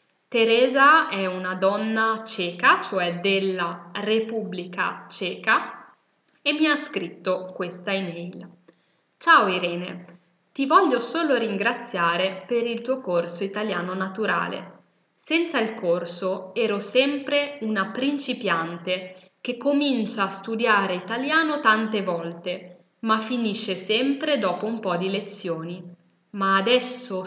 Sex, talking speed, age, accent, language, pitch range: female, 110 wpm, 10-29, native, Italian, 185-240 Hz